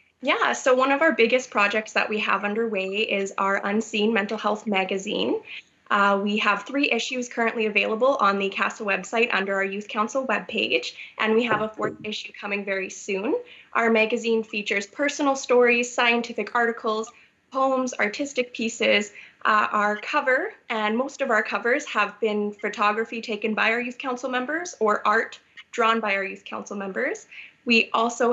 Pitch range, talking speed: 210-245 Hz, 165 wpm